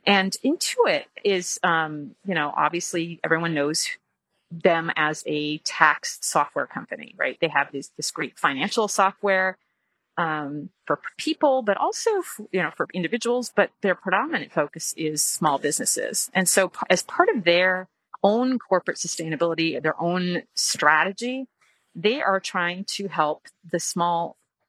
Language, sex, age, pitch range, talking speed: English, female, 30-49, 160-200 Hz, 140 wpm